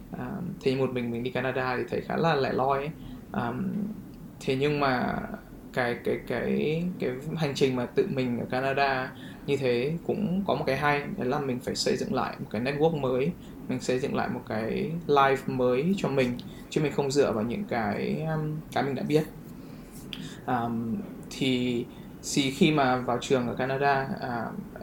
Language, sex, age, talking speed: Vietnamese, male, 20-39, 190 wpm